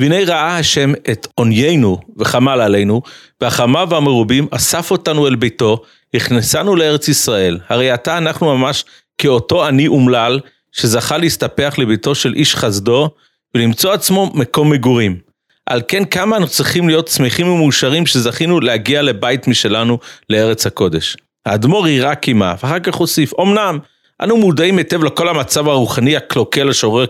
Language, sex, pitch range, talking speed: Hebrew, male, 120-170 Hz, 135 wpm